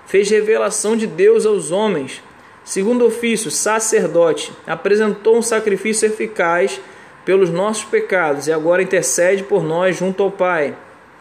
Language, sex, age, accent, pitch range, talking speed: Portuguese, male, 20-39, Brazilian, 180-220 Hz, 130 wpm